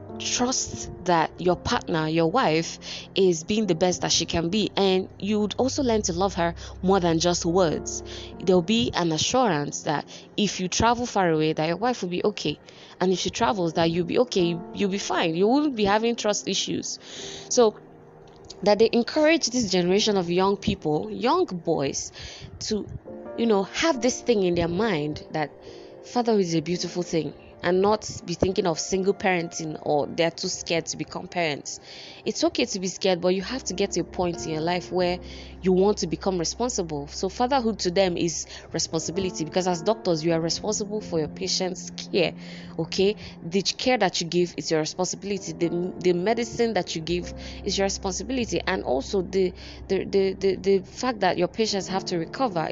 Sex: female